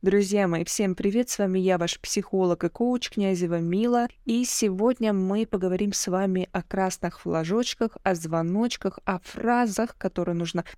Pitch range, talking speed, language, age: 180-225 Hz, 155 wpm, Russian, 20-39